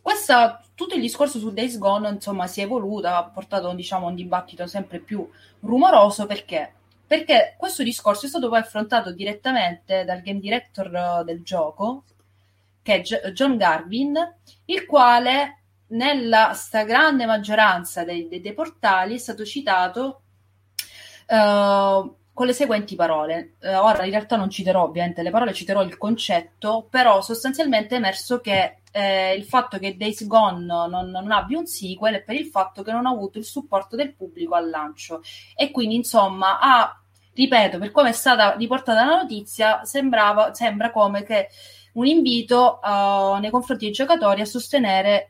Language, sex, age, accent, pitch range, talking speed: Italian, female, 20-39, native, 190-250 Hz, 160 wpm